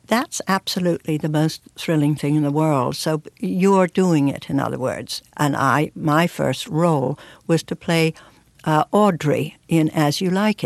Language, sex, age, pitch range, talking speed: English, female, 60-79, 145-185 Hz, 170 wpm